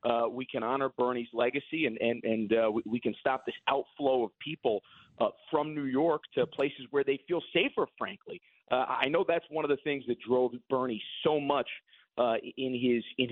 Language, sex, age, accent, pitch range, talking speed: English, male, 40-59, American, 115-155 Hz, 205 wpm